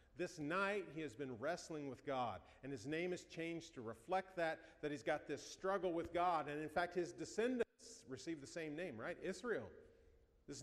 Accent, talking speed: American, 200 wpm